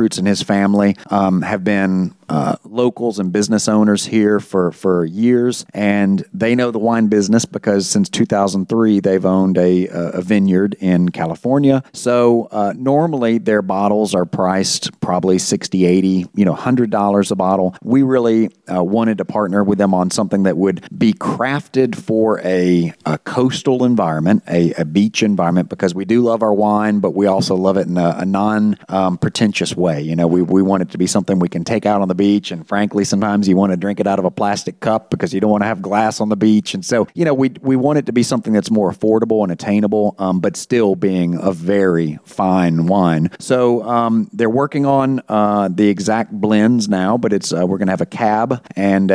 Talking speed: 210 wpm